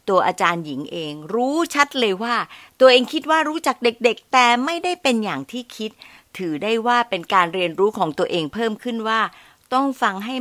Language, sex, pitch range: Thai, female, 180-250 Hz